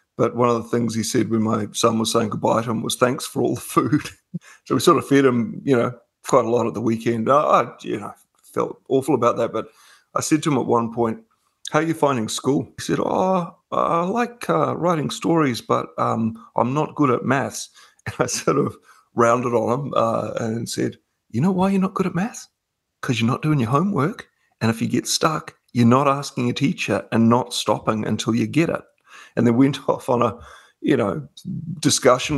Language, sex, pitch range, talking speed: English, male, 115-145 Hz, 220 wpm